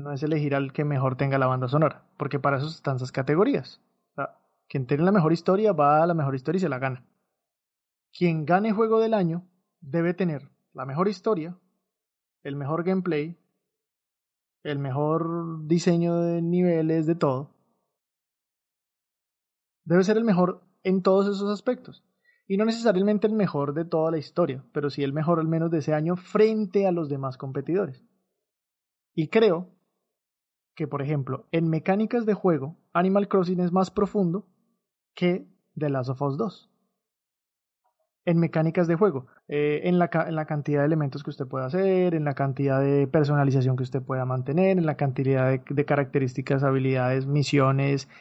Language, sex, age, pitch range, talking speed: Spanish, male, 20-39, 140-190 Hz, 165 wpm